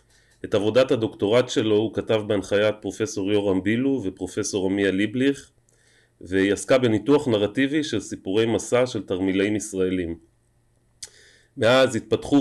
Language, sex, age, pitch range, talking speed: Hebrew, male, 30-49, 100-125 Hz, 120 wpm